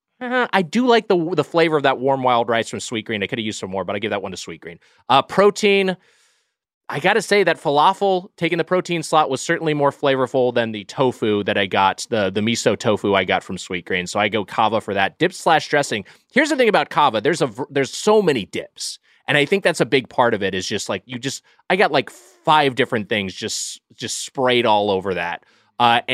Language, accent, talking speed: English, American, 245 wpm